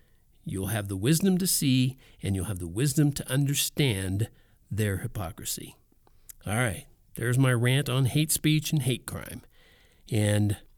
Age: 50-69